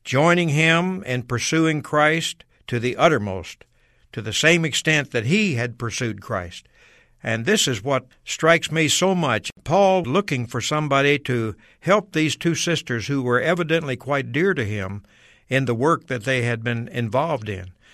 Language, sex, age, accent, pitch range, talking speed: English, male, 60-79, American, 120-160 Hz, 165 wpm